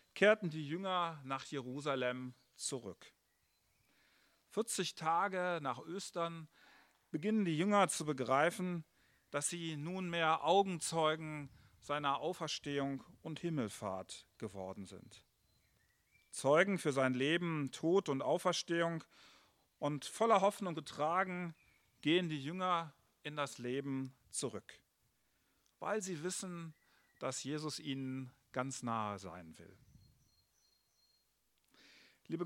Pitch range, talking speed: 135-175 Hz, 100 wpm